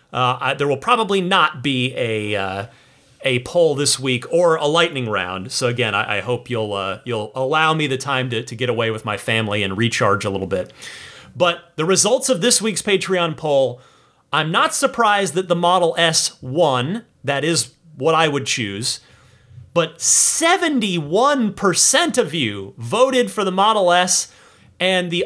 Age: 30-49